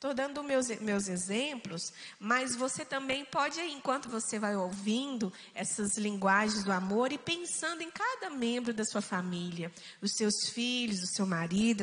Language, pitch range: Portuguese, 215-285 Hz